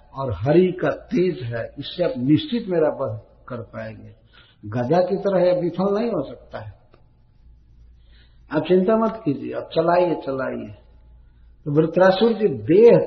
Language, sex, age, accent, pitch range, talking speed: Hindi, male, 60-79, native, 115-185 Hz, 145 wpm